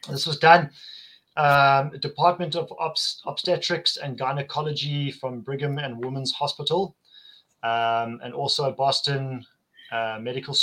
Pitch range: 130-165 Hz